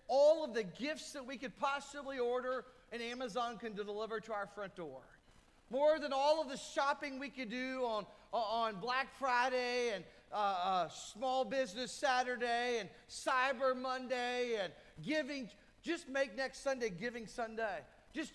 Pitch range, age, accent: 200-255 Hz, 40-59, American